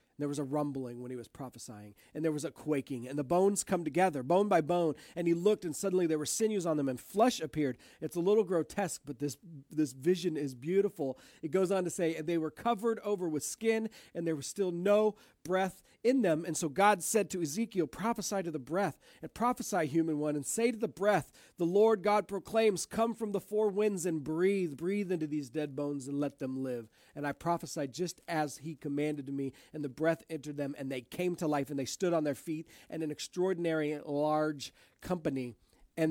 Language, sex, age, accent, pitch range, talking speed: English, male, 40-59, American, 140-180 Hz, 225 wpm